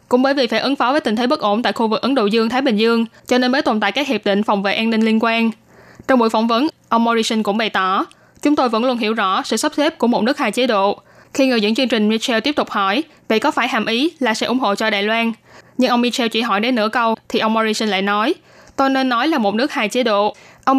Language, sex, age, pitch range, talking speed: Vietnamese, female, 10-29, 215-260 Hz, 295 wpm